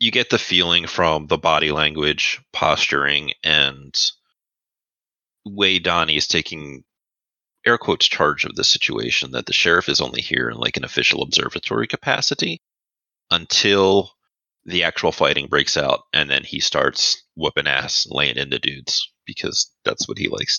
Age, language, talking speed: 30-49, English, 155 wpm